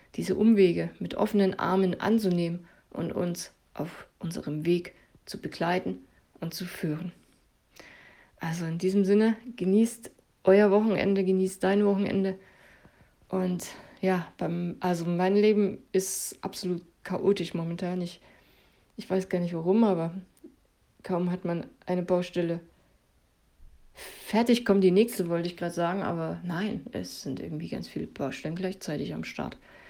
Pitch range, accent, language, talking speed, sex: 170-200 Hz, German, German, 130 wpm, female